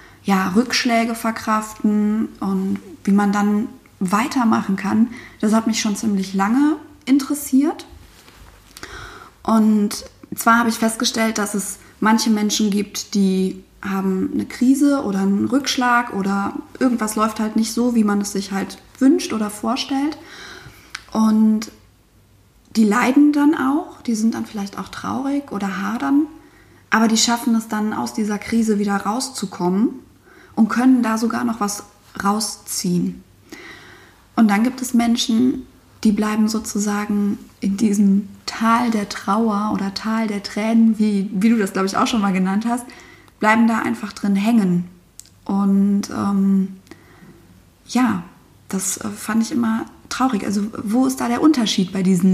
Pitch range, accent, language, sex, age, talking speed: 205-245 Hz, German, German, female, 20-39, 145 wpm